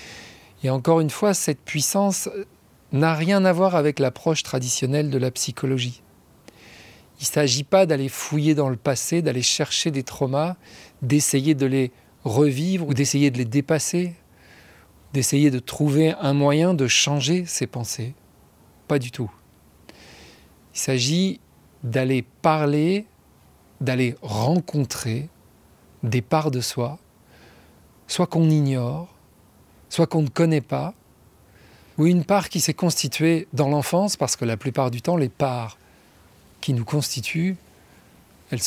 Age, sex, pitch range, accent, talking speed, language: 40-59, male, 115-155 Hz, French, 135 wpm, French